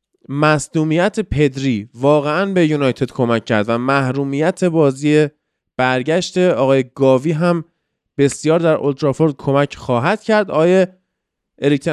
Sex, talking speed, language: male, 105 wpm, Persian